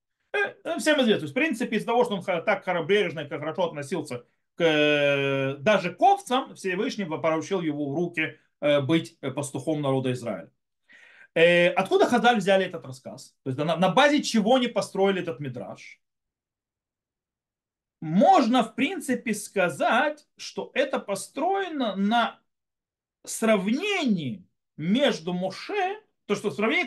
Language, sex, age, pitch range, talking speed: Russian, male, 40-59, 165-245 Hz, 115 wpm